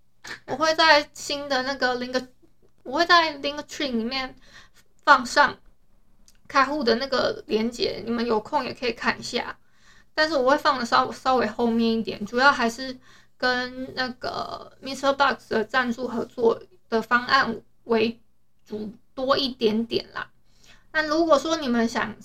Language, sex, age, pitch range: Chinese, female, 20-39, 235-290 Hz